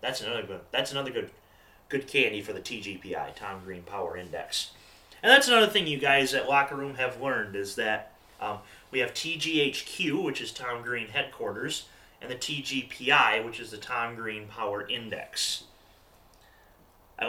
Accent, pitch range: American, 120-180 Hz